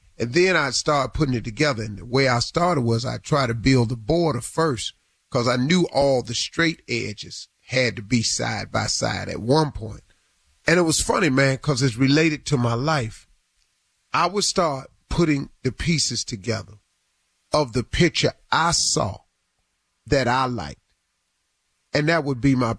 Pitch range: 115-155 Hz